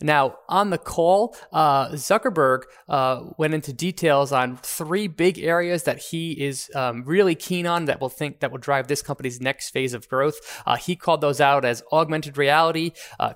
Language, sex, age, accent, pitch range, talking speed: English, male, 20-39, American, 140-185 Hz, 190 wpm